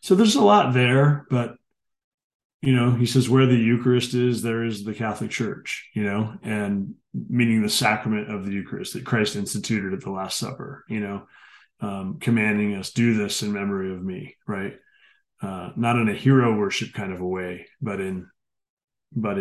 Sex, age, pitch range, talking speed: male, 30-49, 95-120 Hz, 185 wpm